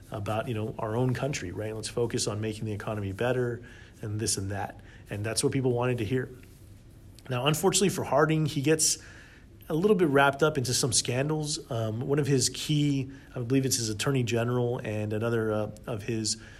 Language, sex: English, male